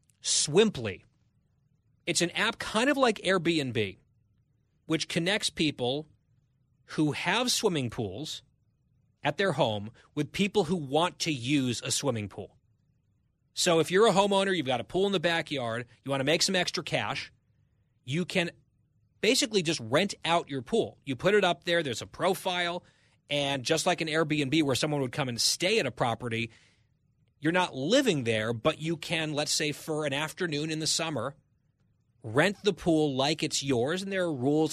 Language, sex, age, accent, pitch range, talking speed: English, male, 30-49, American, 125-170 Hz, 175 wpm